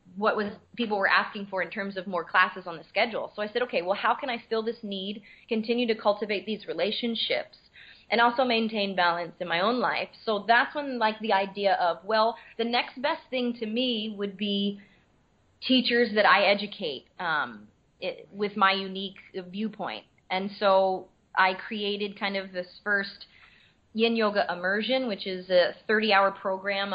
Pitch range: 190-230 Hz